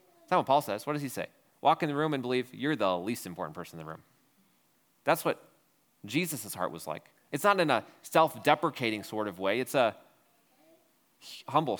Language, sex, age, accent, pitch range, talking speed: English, male, 30-49, American, 110-160 Hz, 205 wpm